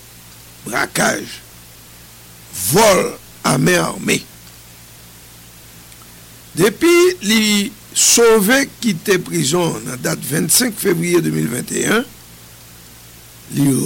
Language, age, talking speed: English, 60-79, 65 wpm